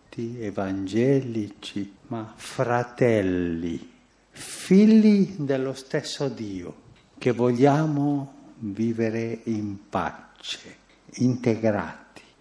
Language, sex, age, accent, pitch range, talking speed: Italian, male, 60-79, native, 100-135 Hz, 65 wpm